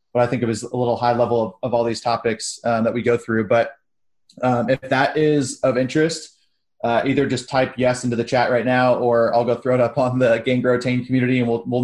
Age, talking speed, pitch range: 20-39, 260 wpm, 120-130 Hz